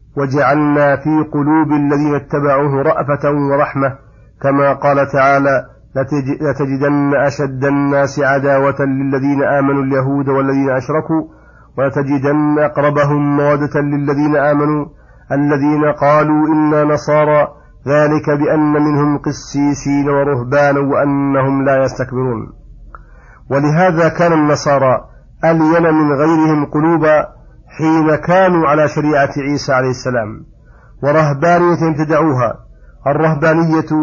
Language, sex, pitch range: Arabic, male, 140-155 Hz